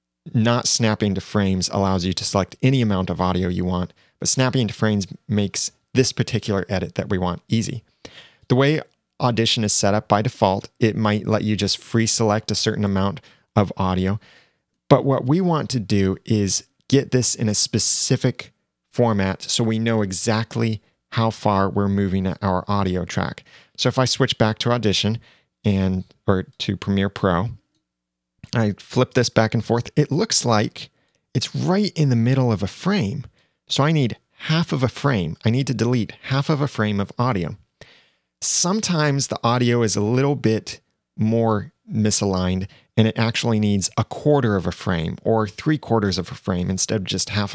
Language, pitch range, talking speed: English, 100-125 Hz, 180 wpm